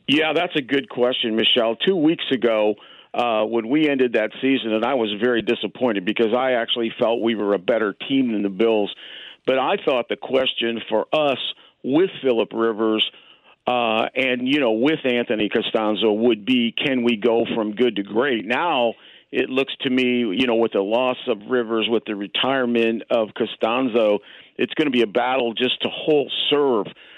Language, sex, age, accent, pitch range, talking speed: English, male, 50-69, American, 115-135 Hz, 190 wpm